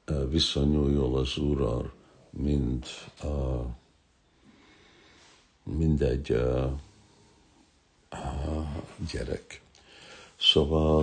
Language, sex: Hungarian, male